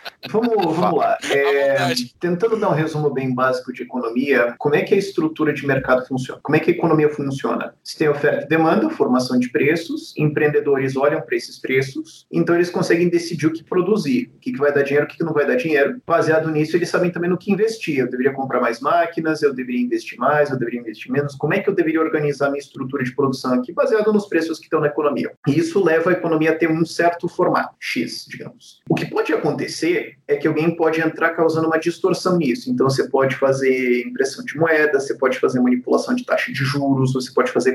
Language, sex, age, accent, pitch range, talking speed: Portuguese, male, 30-49, Brazilian, 140-180 Hz, 220 wpm